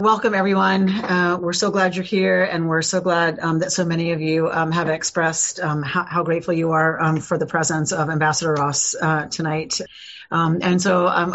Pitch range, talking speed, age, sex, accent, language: 170-200 Hz, 210 wpm, 40-59, female, American, English